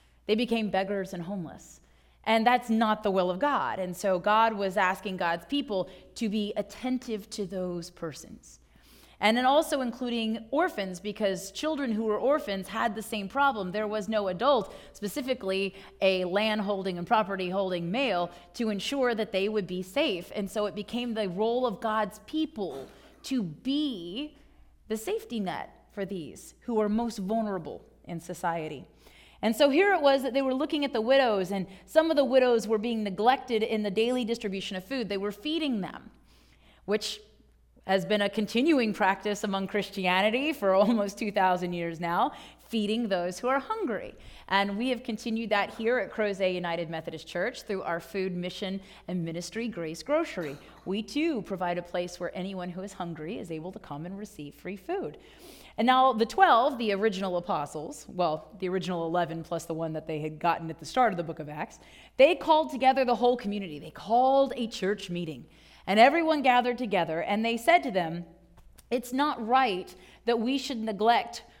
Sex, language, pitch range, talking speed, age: female, English, 185-245 Hz, 185 wpm, 30-49